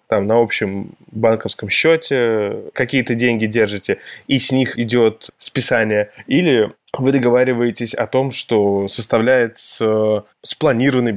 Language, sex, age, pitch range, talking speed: Russian, male, 20-39, 110-130 Hz, 115 wpm